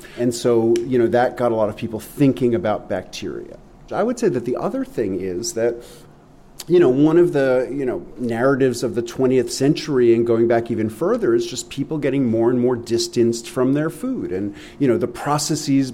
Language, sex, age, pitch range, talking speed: English, male, 40-59, 115-145 Hz, 205 wpm